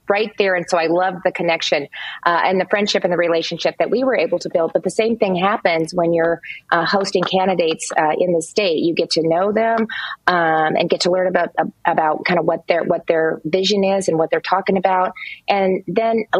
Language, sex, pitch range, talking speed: English, female, 165-190 Hz, 230 wpm